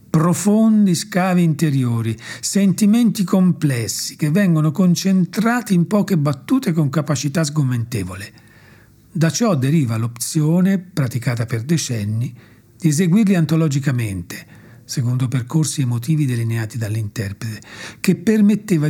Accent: native